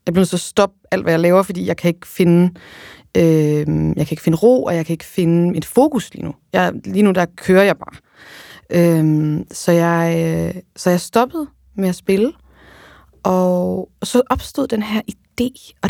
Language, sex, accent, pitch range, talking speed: Danish, female, native, 165-215 Hz, 195 wpm